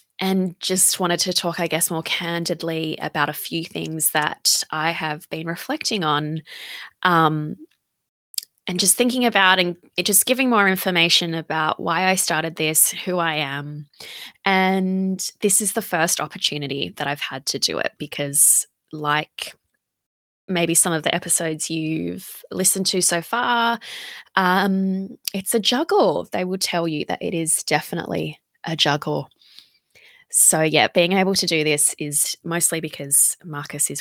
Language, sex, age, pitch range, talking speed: English, female, 20-39, 155-190 Hz, 155 wpm